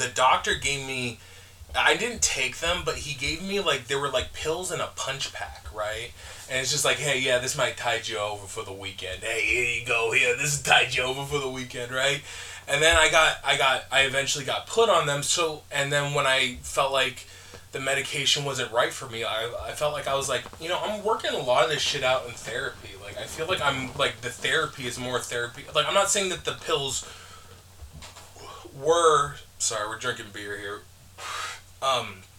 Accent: American